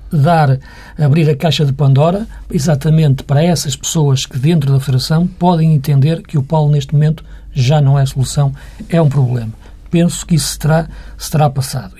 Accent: Portuguese